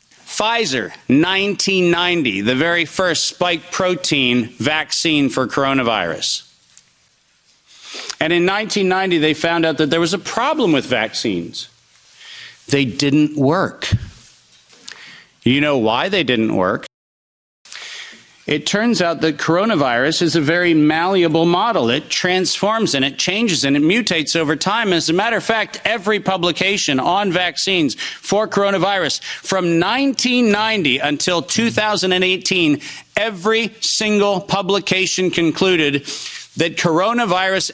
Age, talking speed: 50-69, 115 wpm